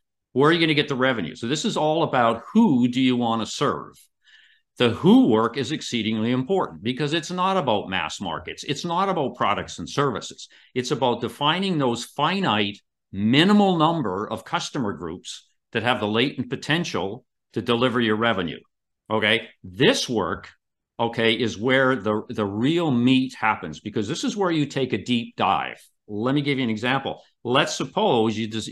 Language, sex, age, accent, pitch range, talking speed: English, male, 50-69, American, 110-155 Hz, 180 wpm